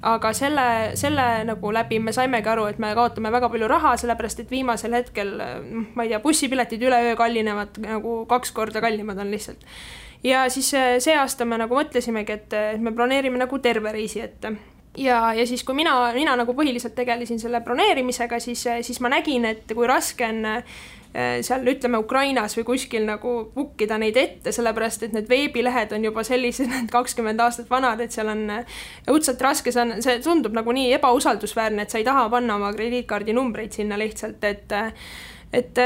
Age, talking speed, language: 20-39, 170 wpm, English